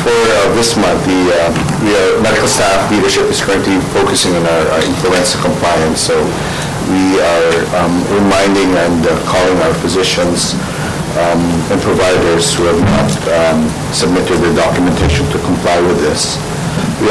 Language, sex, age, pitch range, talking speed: English, male, 50-69, 85-100 Hz, 145 wpm